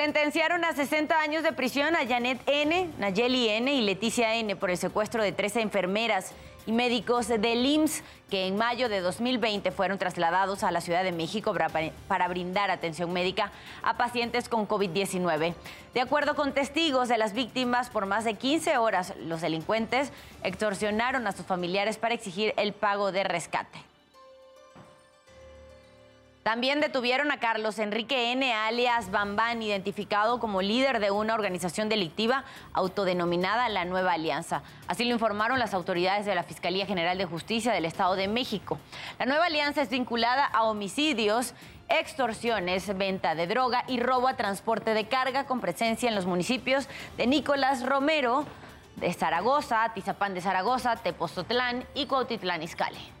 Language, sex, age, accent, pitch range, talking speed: Spanish, female, 20-39, Mexican, 190-255 Hz, 155 wpm